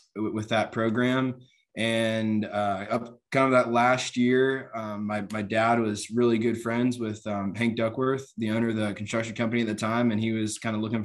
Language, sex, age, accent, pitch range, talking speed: English, male, 20-39, American, 100-115 Hz, 200 wpm